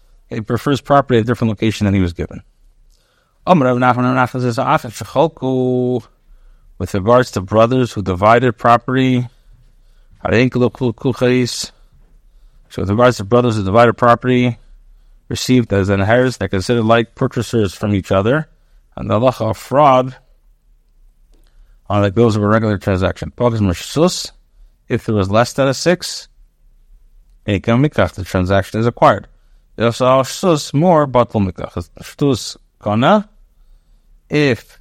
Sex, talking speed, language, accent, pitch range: male, 105 wpm, English, American, 100-130 Hz